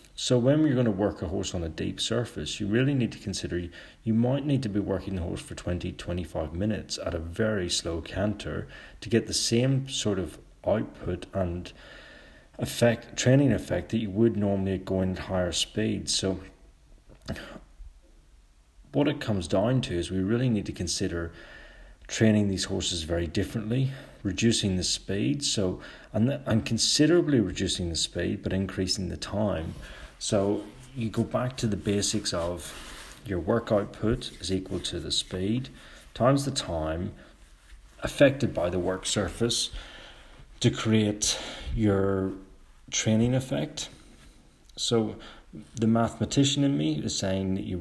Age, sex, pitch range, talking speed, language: 40-59, male, 90-115 Hz, 155 wpm, English